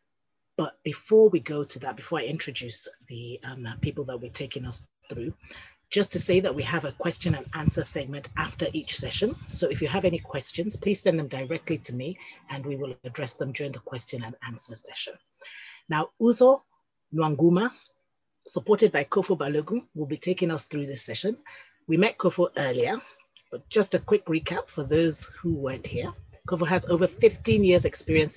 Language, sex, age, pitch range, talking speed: English, female, 30-49, 140-185 Hz, 185 wpm